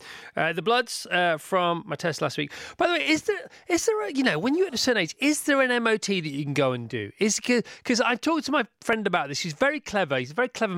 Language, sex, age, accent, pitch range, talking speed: English, male, 30-49, British, 150-230 Hz, 285 wpm